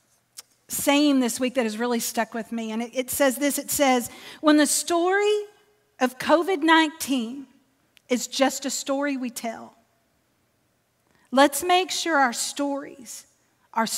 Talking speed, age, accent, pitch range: 140 wpm, 40-59, American, 250-315 Hz